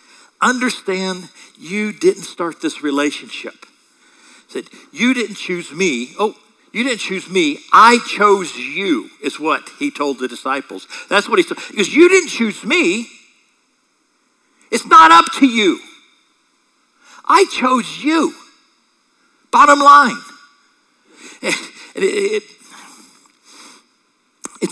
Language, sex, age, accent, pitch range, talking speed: English, male, 60-79, American, 185-305 Hz, 115 wpm